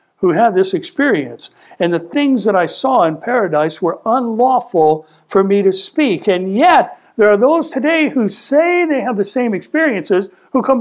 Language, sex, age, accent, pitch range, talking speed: English, male, 60-79, American, 160-225 Hz, 185 wpm